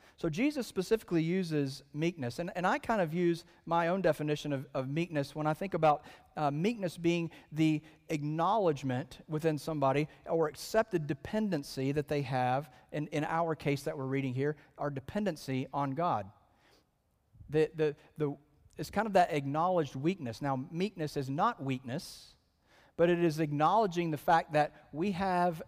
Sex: male